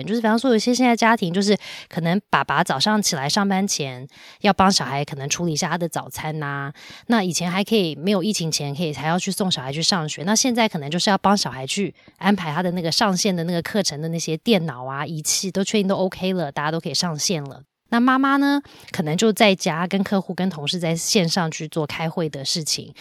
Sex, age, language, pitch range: female, 20-39, Chinese, 155-200 Hz